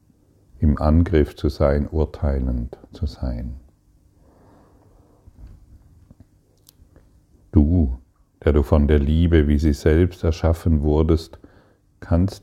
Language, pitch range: German, 75-95 Hz